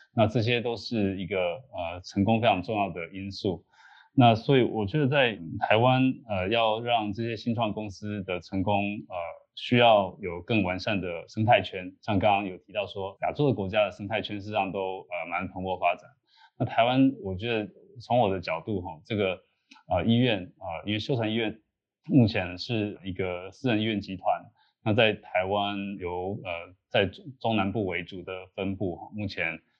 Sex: male